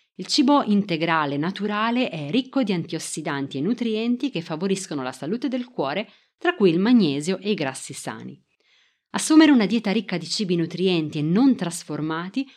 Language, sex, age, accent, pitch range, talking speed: Italian, female, 30-49, native, 155-225 Hz, 160 wpm